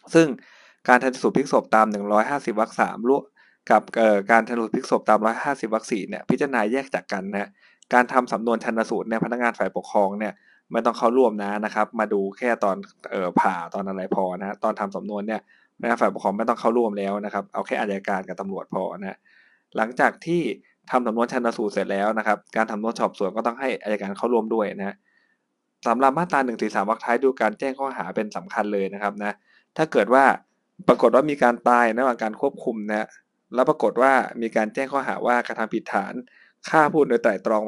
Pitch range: 110-130 Hz